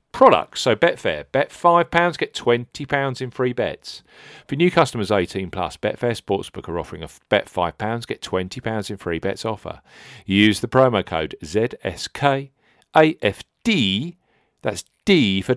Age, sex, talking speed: 40-59, male, 140 wpm